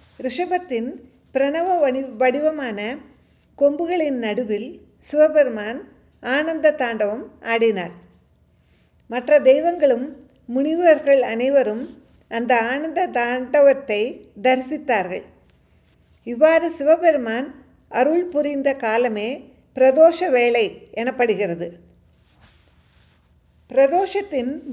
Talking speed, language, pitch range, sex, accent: 65 wpm, Tamil, 235-305 Hz, female, native